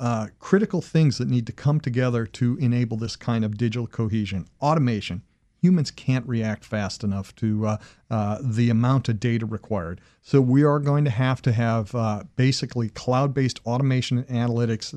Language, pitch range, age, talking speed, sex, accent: English, 115-135 Hz, 40-59, 170 wpm, male, American